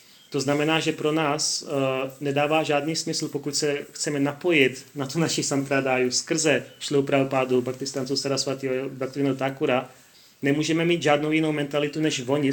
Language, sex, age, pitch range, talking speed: Czech, male, 30-49, 130-145 Hz, 145 wpm